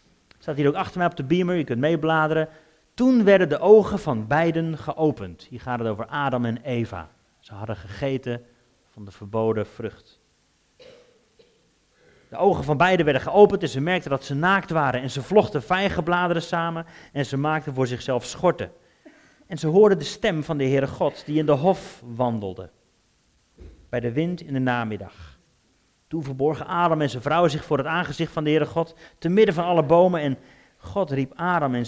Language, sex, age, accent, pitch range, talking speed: Dutch, male, 40-59, Dutch, 125-180 Hz, 190 wpm